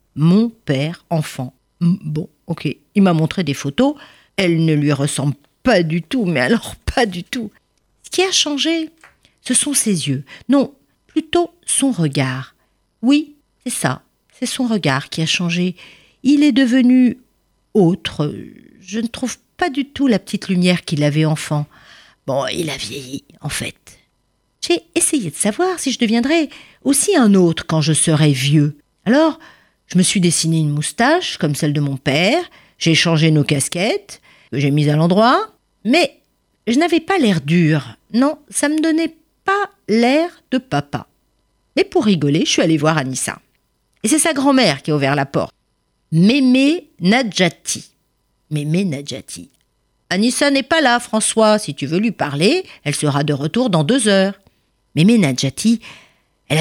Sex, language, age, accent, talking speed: female, French, 50-69, French, 165 wpm